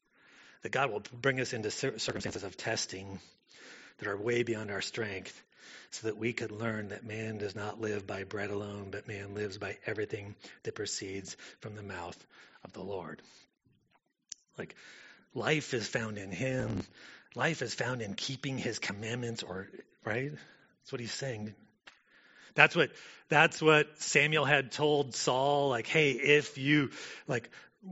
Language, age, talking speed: English, 30-49, 155 wpm